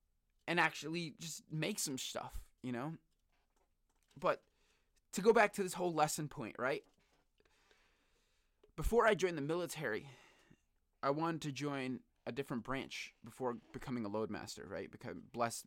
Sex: male